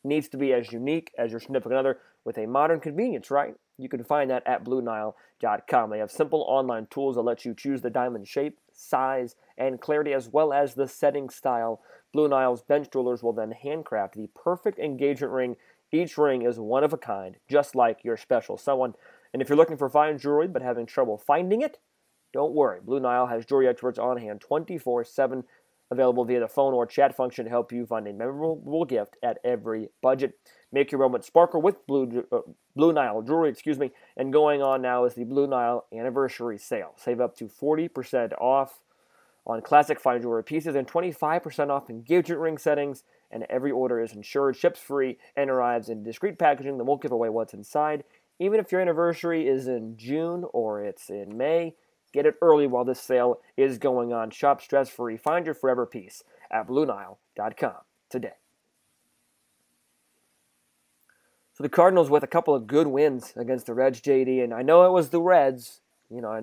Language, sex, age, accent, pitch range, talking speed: English, male, 30-49, American, 120-150 Hz, 190 wpm